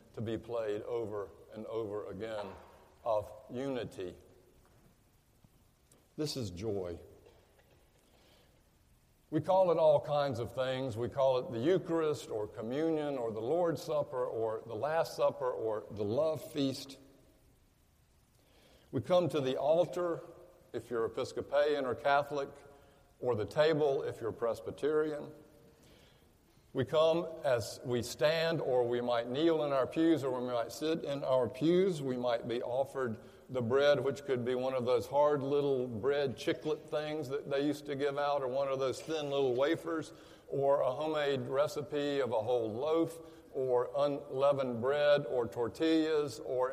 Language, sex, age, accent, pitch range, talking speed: English, male, 60-79, American, 125-155 Hz, 150 wpm